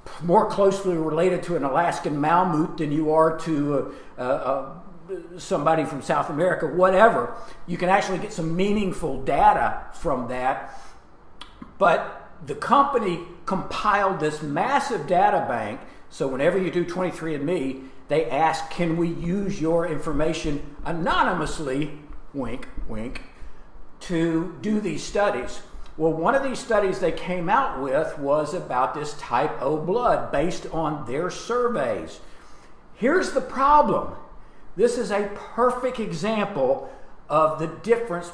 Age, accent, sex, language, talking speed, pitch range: 50-69, American, male, English, 130 wpm, 150-190 Hz